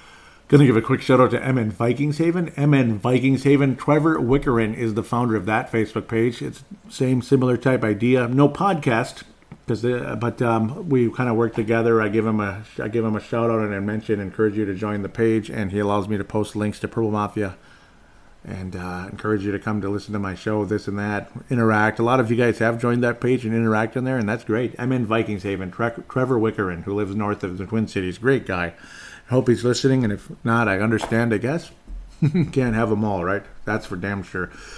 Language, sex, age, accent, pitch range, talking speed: English, male, 40-59, American, 105-125 Hz, 225 wpm